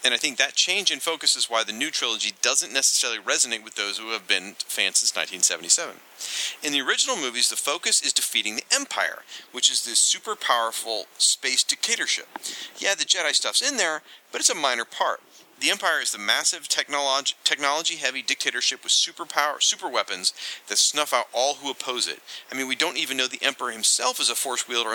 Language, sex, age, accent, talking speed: English, male, 40-59, American, 195 wpm